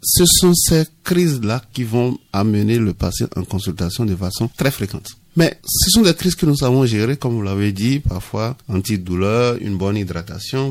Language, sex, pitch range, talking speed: French, male, 100-140 Hz, 190 wpm